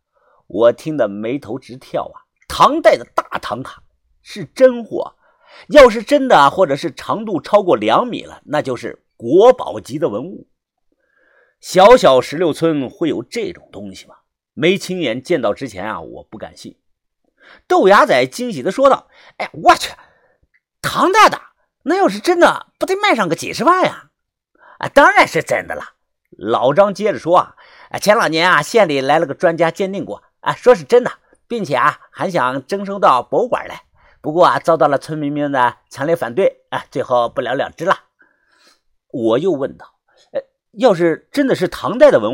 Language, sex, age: Chinese, male, 50-69